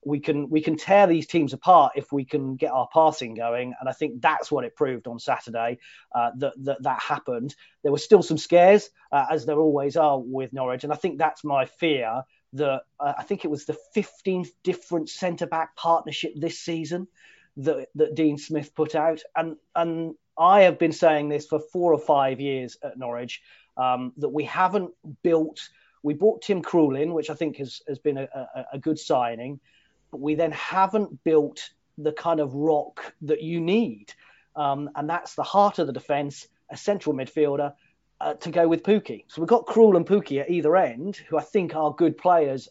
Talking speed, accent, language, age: 200 wpm, British, English, 30-49